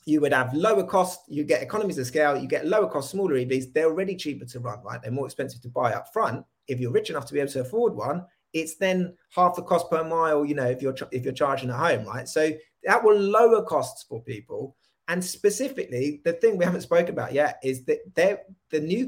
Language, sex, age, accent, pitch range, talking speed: English, male, 30-49, British, 145-205 Hz, 240 wpm